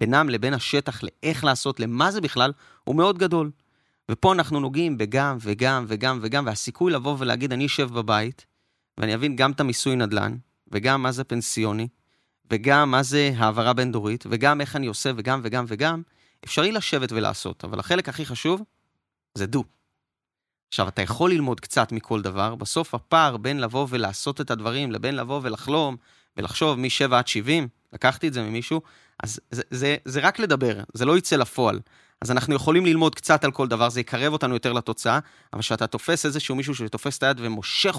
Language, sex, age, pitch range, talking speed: Hebrew, male, 30-49, 115-145 Hz, 175 wpm